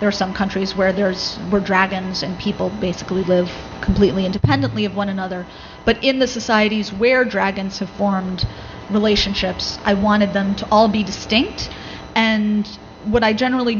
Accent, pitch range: American, 195-225 Hz